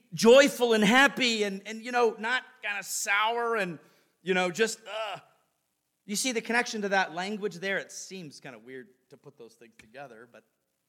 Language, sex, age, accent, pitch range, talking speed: English, male, 40-59, American, 140-205 Hz, 195 wpm